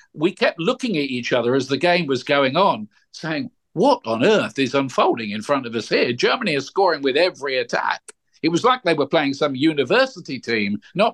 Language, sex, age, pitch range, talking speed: English, male, 50-69, 135-165 Hz, 210 wpm